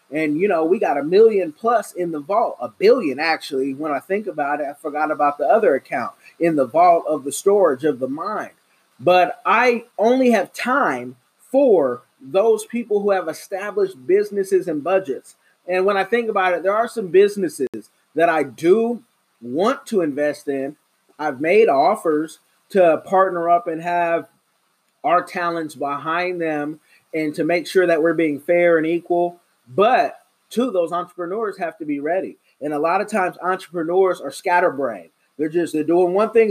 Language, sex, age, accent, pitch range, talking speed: English, male, 30-49, American, 160-205 Hz, 180 wpm